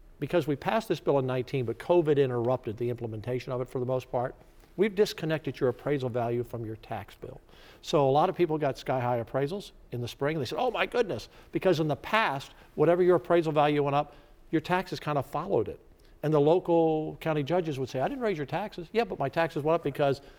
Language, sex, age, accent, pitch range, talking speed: English, male, 50-69, American, 125-160 Hz, 235 wpm